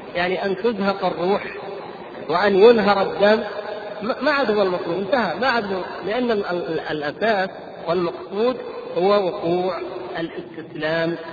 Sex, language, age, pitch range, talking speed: male, Arabic, 50-69, 175-210 Hz, 100 wpm